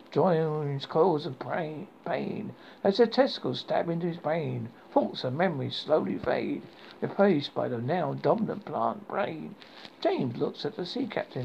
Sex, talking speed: male, 145 wpm